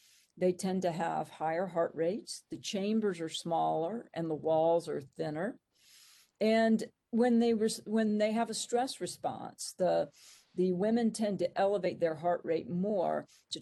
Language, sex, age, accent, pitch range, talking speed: English, female, 50-69, American, 170-215 Hz, 165 wpm